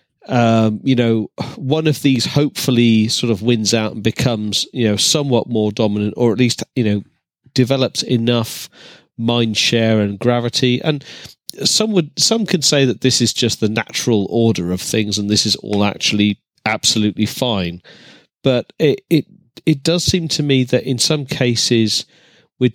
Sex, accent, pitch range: male, British, 110-135 Hz